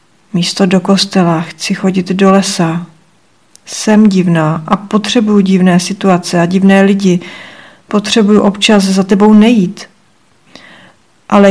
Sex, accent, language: female, native, Czech